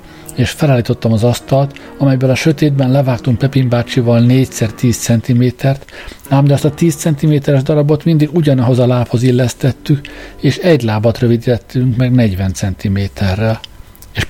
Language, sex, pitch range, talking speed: Hungarian, male, 110-135 Hz, 140 wpm